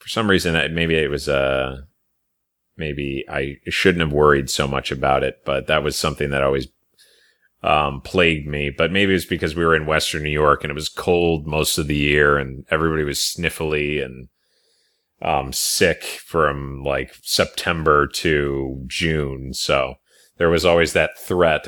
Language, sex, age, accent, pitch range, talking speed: English, male, 30-49, American, 70-90 Hz, 170 wpm